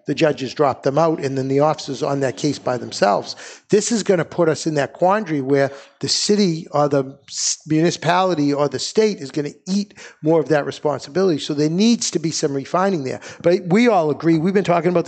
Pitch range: 140-175 Hz